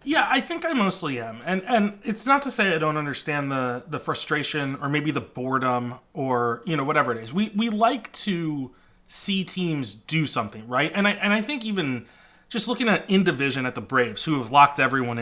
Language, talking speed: English, 215 wpm